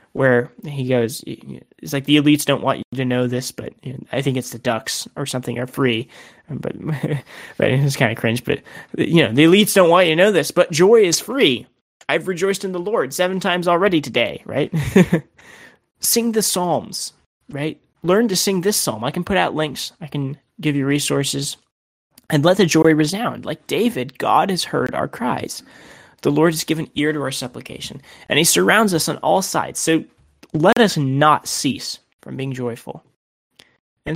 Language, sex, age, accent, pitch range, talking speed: English, male, 20-39, American, 130-175 Hz, 190 wpm